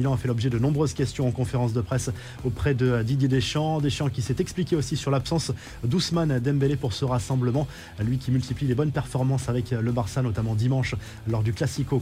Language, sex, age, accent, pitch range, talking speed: French, male, 20-39, French, 120-145 Hz, 200 wpm